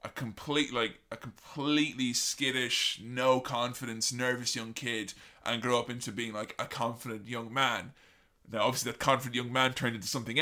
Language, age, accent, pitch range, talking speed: English, 20-39, British, 120-150 Hz, 175 wpm